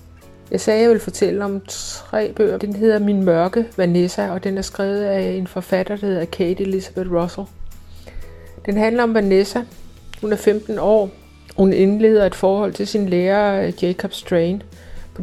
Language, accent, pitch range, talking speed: Danish, native, 190-215 Hz, 175 wpm